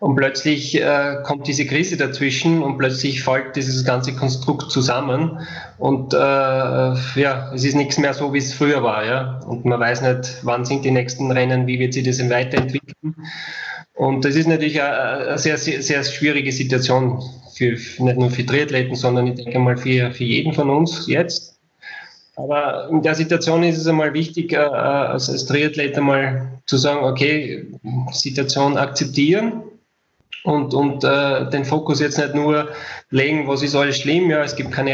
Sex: male